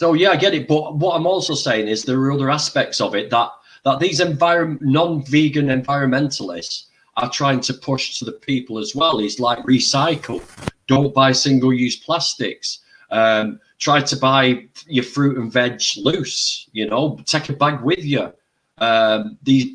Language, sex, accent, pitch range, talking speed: English, male, British, 125-150 Hz, 170 wpm